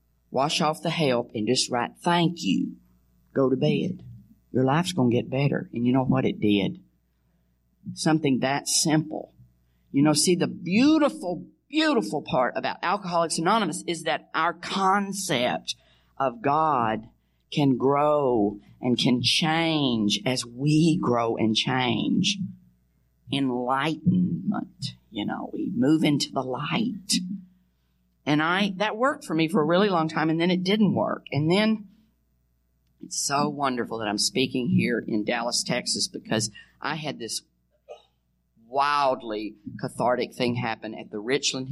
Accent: American